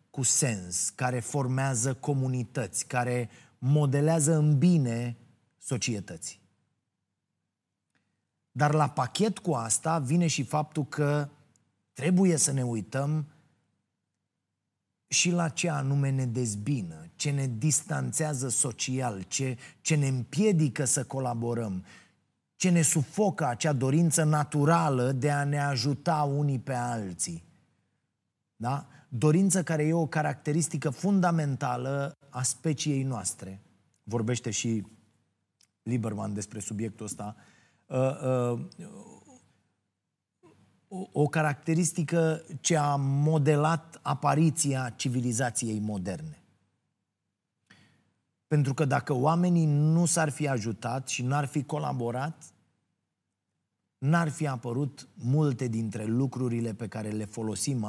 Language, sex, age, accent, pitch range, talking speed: Romanian, male, 30-49, native, 120-155 Hz, 100 wpm